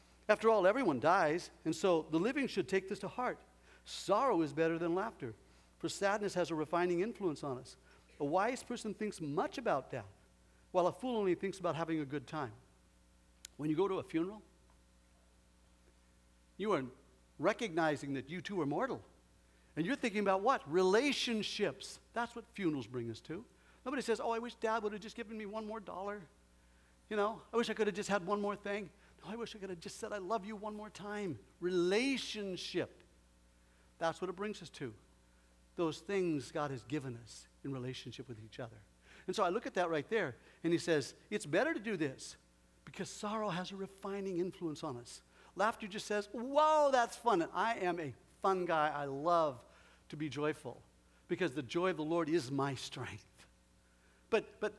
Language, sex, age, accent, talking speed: English, male, 60-79, American, 195 wpm